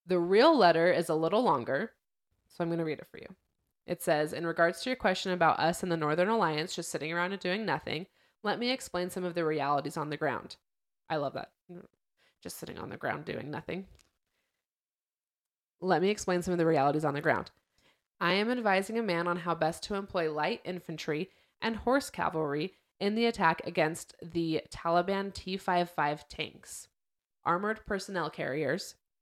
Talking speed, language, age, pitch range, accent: 185 wpm, English, 20-39, 165-195 Hz, American